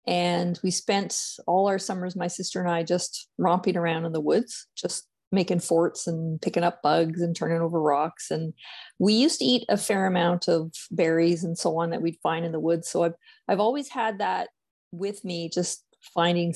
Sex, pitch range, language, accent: female, 170-220 Hz, English, American